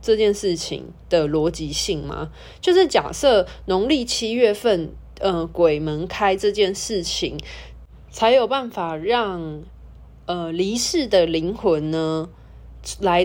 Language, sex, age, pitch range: Chinese, female, 20-39, 155-225 Hz